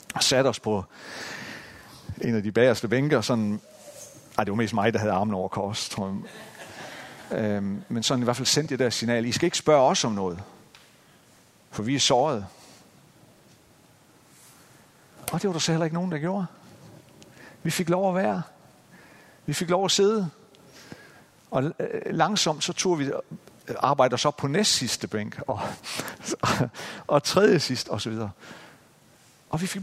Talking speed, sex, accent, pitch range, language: 160 wpm, male, native, 115-165 Hz, Danish